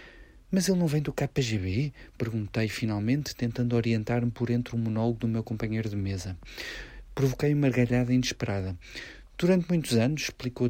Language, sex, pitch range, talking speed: Portuguese, male, 110-130 Hz, 150 wpm